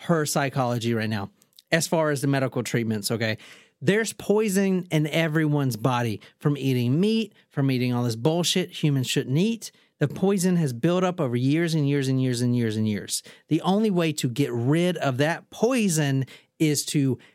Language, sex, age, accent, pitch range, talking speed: English, male, 40-59, American, 135-185 Hz, 185 wpm